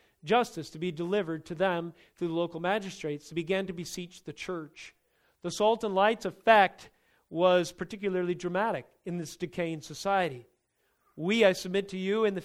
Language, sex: English, male